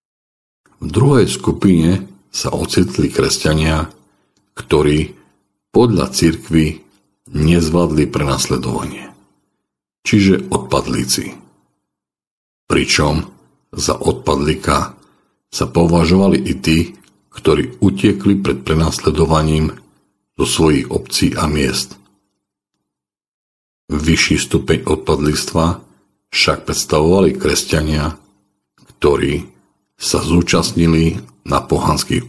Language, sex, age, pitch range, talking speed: English, male, 50-69, 70-95 Hz, 75 wpm